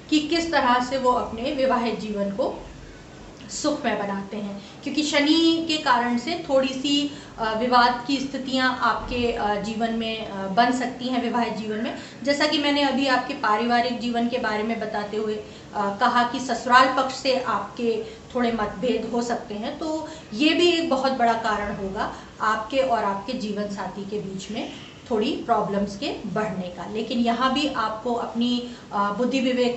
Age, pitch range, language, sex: 30-49, 220-265 Hz, Hindi, female